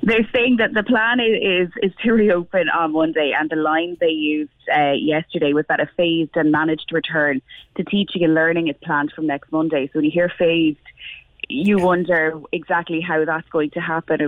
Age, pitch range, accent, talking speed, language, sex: 20-39, 155-175 Hz, Irish, 200 wpm, English, female